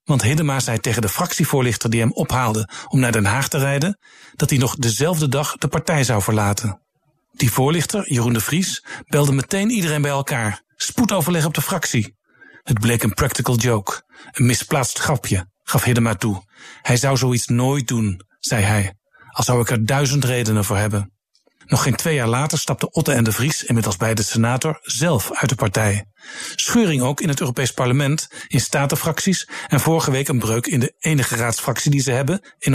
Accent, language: Dutch, Dutch